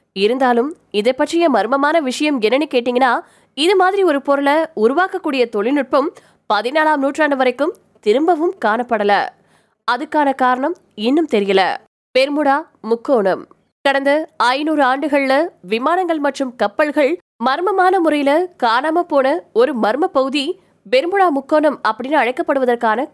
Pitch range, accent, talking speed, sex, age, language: 240-315 Hz, native, 85 wpm, female, 20-39, Tamil